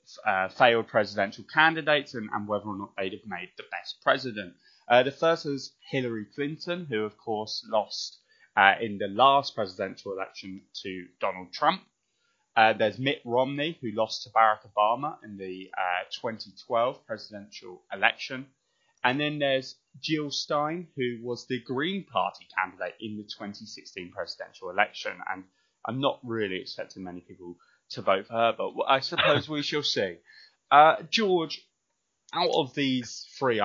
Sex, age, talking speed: male, 20-39, 155 wpm